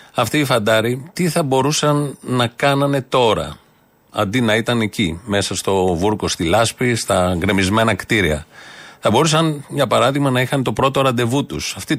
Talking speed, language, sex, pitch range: 160 wpm, Greek, male, 110-145 Hz